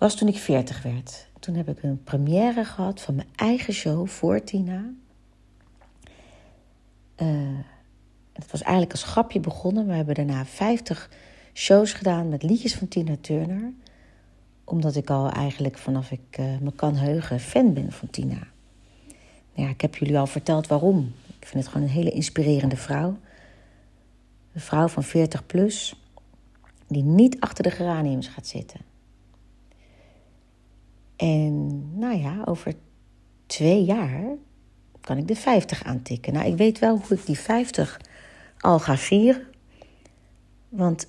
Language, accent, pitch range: Dutch, Dutch, 130-185 Hz